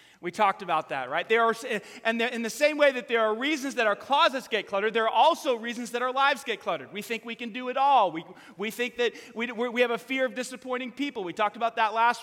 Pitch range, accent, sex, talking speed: 195-260 Hz, American, male, 265 wpm